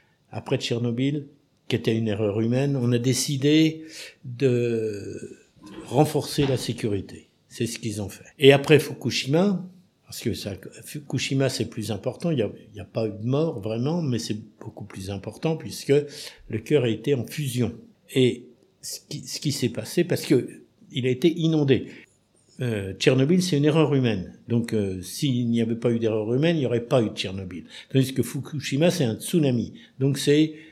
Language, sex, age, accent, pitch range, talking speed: French, male, 60-79, French, 115-145 Hz, 185 wpm